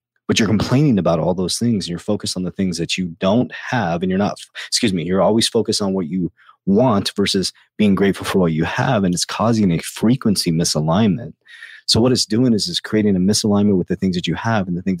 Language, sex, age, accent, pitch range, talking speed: English, male, 30-49, American, 90-115 Hz, 240 wpm